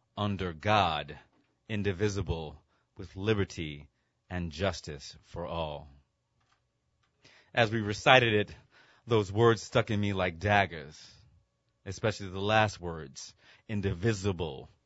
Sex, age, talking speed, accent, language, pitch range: male, 30-49, 100 wpm, American, English, 90-110 Hz